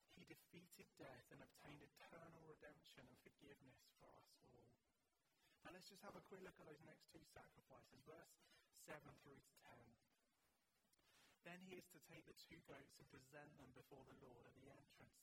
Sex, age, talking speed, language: male, 30-49, 180 wpm, English